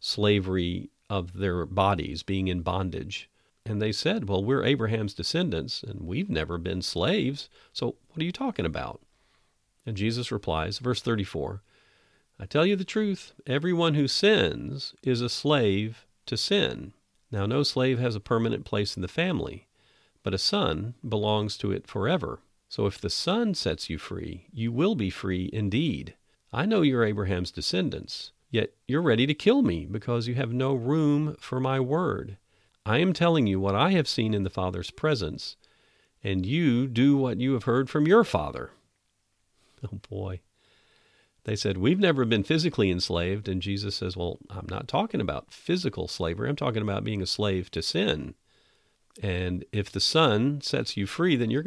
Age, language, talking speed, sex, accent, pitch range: 50-69, English, 175 wpm, male, American, 95-135 Hz